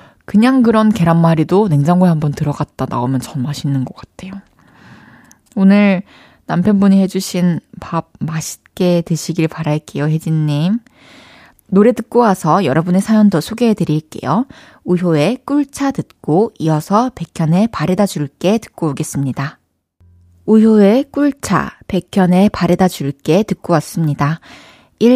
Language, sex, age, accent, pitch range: Korean, female, 20-39, native, 155-225 Hz